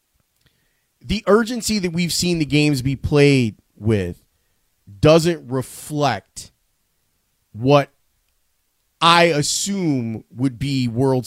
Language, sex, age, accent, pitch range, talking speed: English, male, 30-49, American, 120-170 Hz, 95 wpm